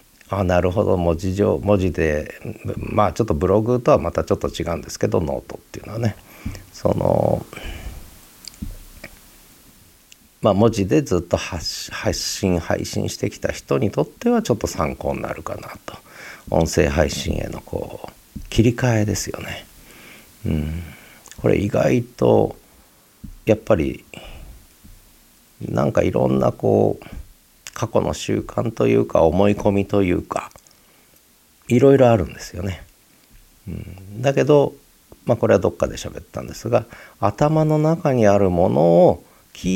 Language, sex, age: Japanese, male, 50-69